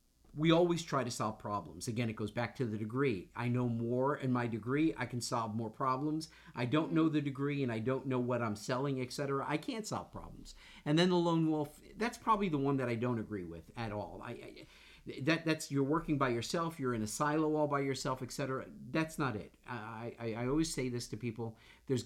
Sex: male